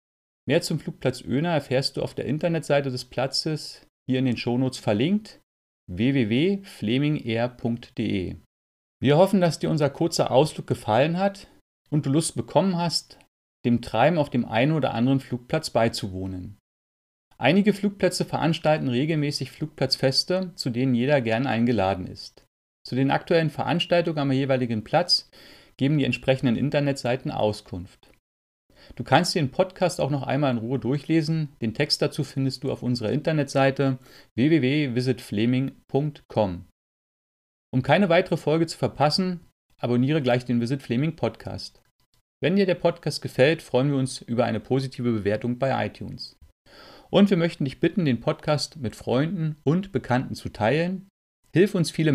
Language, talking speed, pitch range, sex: German, 145 wpm, 120-160 Hz, male